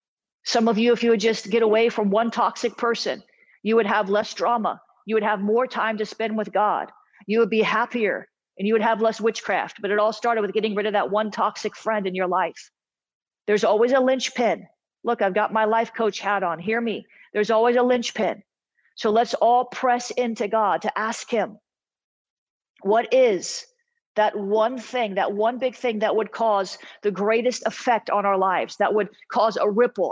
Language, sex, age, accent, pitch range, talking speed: English, female, 40-59, American, 205-235 Hz, 205 wpm